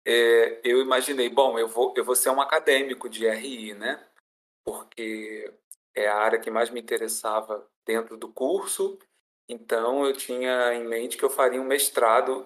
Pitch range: 120-165 Hz